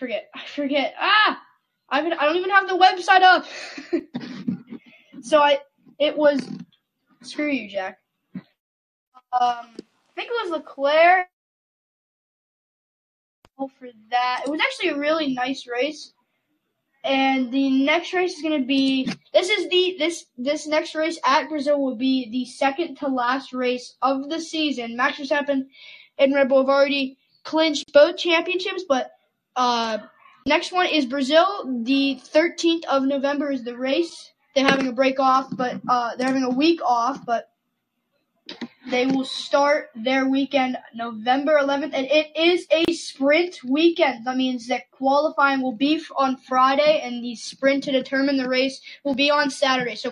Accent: American